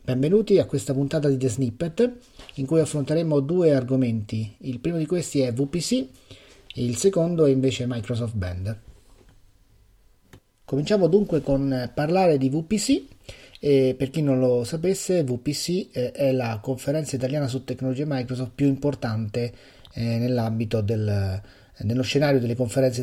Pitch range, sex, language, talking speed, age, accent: 120-150 Hz, male, Italian, 140 wpm, 30-49, native